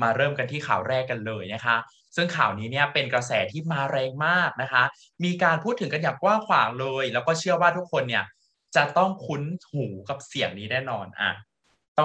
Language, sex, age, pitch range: Thai, male, 20-39, 125-165 Hz